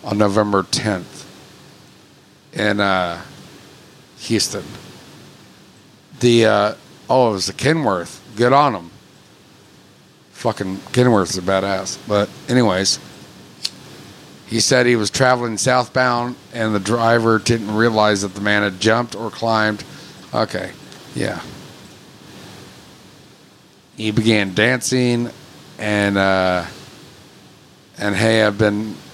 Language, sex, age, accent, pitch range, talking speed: English, male, 50-69, American, 100-120 Hz, 105 wpm